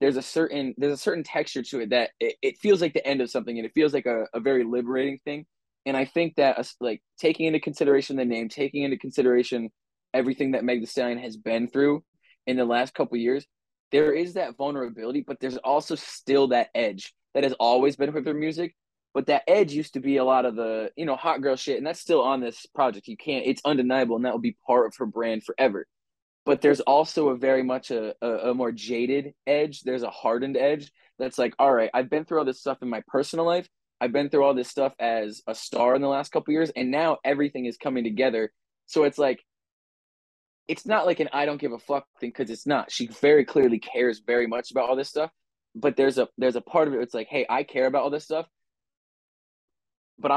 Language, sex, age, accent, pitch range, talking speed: English, male, 20-39, American, 125-145 Hz, 240 wpm